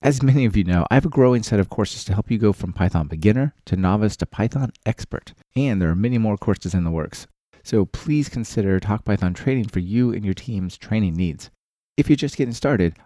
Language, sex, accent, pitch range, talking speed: English, male, American, 95-120 Hz, 230 wpm